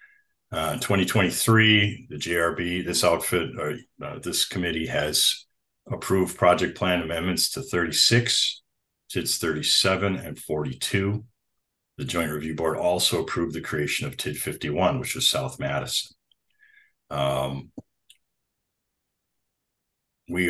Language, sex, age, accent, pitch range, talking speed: English, male, 50-69, American, 75-125 Hz, 110 wpm